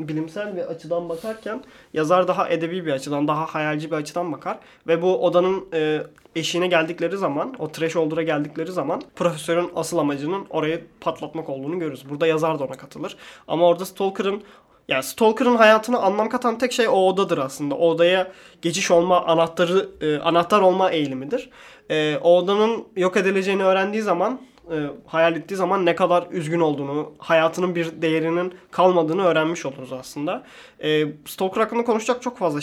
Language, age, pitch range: Turkish, 20-39, 160-185 Hz